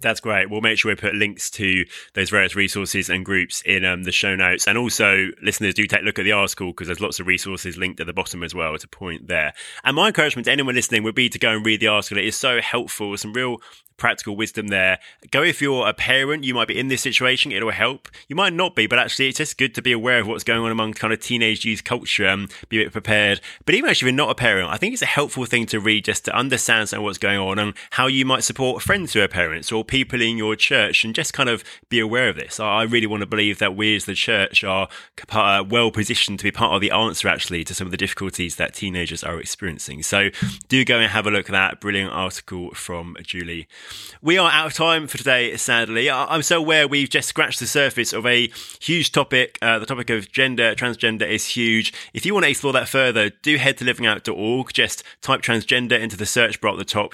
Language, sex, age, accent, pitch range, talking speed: English, male, 20-39, British, 100-125 Hz, 255 wpm